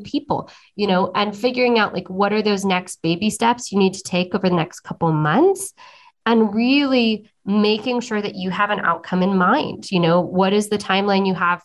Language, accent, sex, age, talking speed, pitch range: English, American, female, 20-39, 215 wpm, 175-215 Hz